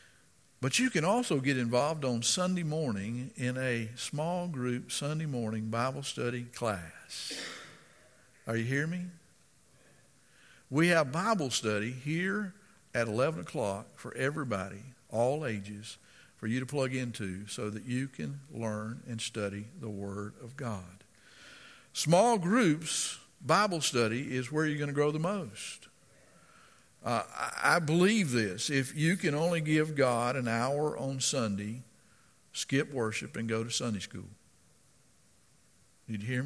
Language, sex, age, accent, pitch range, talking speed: English, male, 50-69, American, 110-155 Hz, 140 wpm